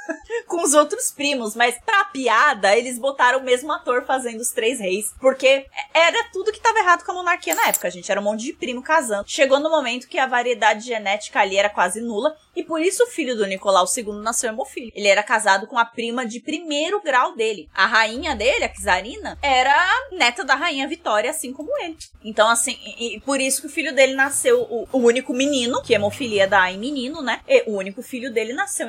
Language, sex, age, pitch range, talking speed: Portuguese, female, 20-39, 210-305 Hz, 215 wpm